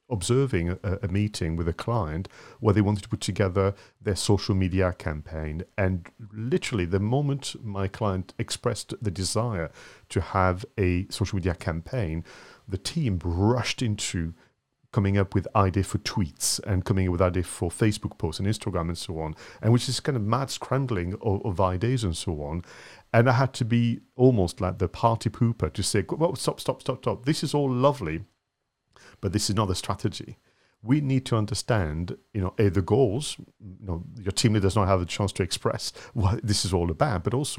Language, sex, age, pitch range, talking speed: English, male, 40-59, 95-120 Hz, 195 wpm